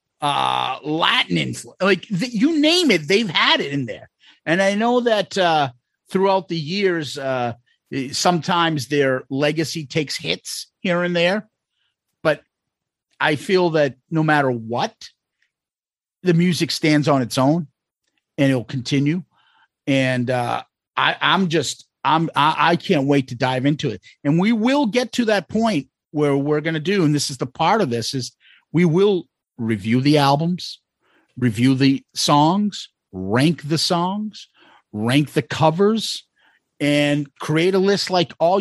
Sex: male